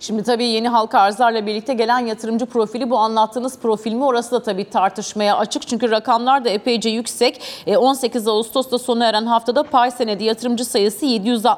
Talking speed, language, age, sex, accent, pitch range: 160 wpm, Turkish, 40-59, female, native, 230-275 Hz